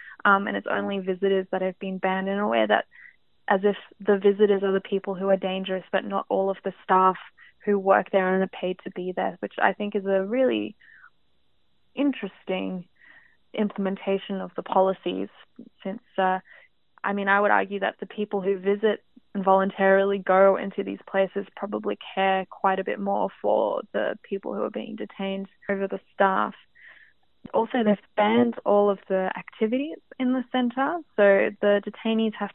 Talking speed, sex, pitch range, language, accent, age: 180 wpm, female, 190-205 Hz, English, Australian, 20-39